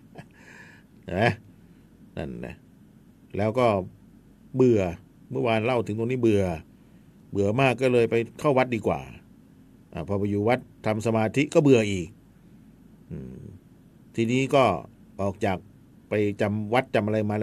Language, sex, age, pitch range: Thai, male, 60-79, 105-150 Hz